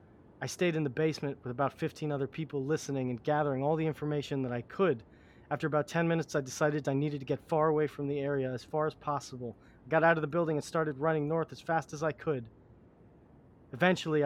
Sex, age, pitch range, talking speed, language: male, 30-49, 125-155 Hz, 225 wpm, English